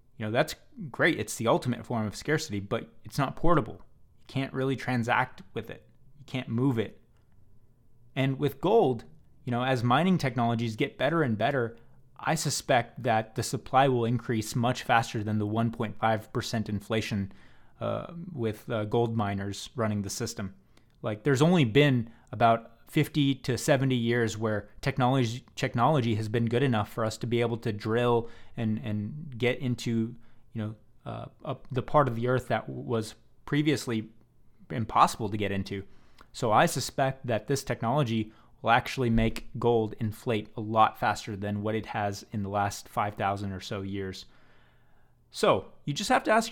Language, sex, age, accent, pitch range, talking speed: English, male, 20-39, American, 110-130 Hz, 170 wpm